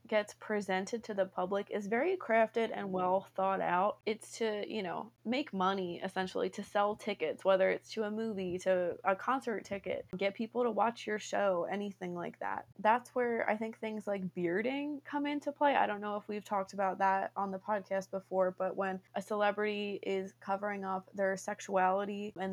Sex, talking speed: female, 190 wpm